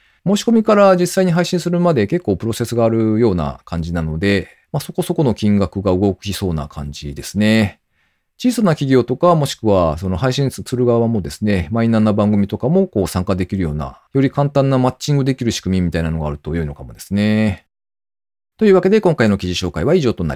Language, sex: Japanese, male